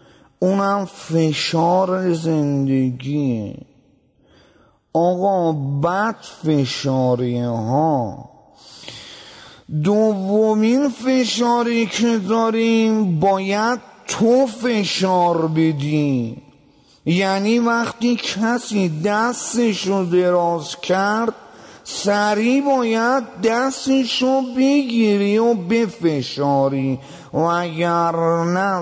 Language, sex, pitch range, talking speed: English, male, 165-230 Hz, 60 wpm